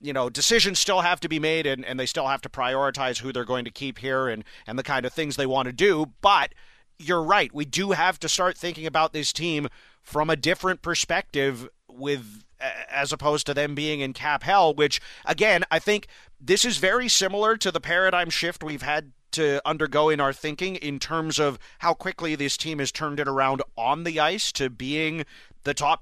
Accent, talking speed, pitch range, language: American, 215 wpm, 140-170 Hz, English